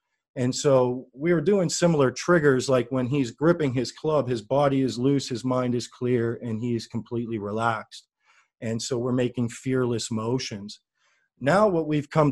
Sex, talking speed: male, 170 wpm